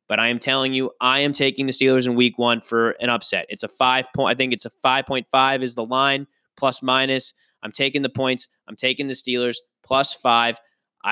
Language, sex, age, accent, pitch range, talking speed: English, male, 20-39, American, 120-135 Hz, 225 wpm